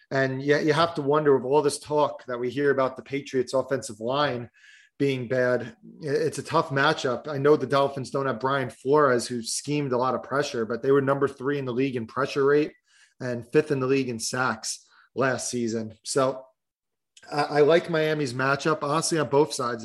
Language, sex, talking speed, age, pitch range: English, male, 205 wpm, 30-49, 125-145 Hz